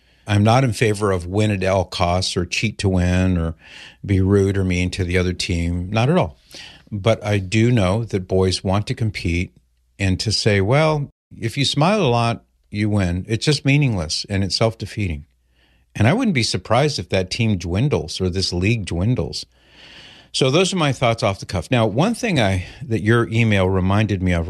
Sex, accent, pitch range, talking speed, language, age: male, American, 90-115 Hz, 200 wpm, English, 50-69